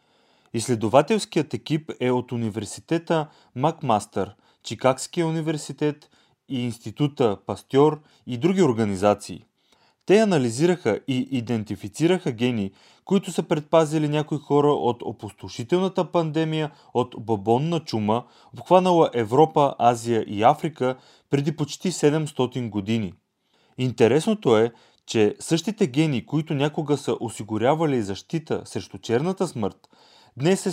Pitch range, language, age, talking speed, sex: 115-160 Hz, Bulgarian, 30-49, 105 wpm, male